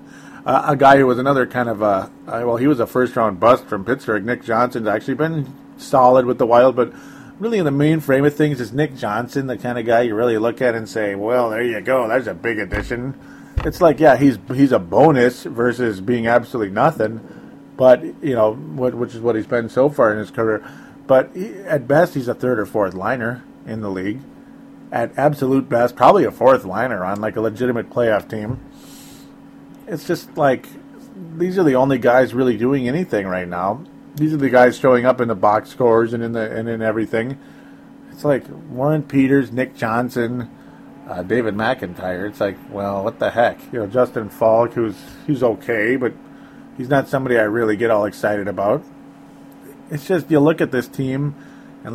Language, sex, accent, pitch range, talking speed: English, male, American, 115-140 Hz, 200 wpm